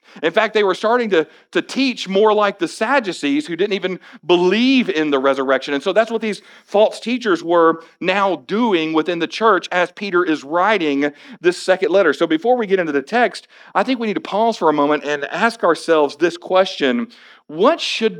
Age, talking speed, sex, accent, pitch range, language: 50-69, 205 wpm, male, American, 155-220 Hz, English